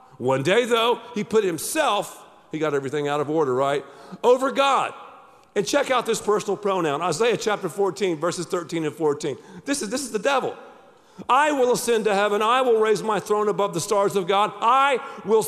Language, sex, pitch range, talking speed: English, male, 195-255 Hz, 200 wpm